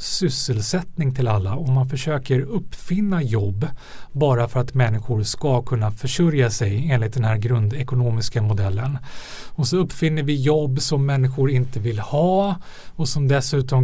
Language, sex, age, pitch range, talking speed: English, male, 30-49, 120-155 Hz, 145 wpm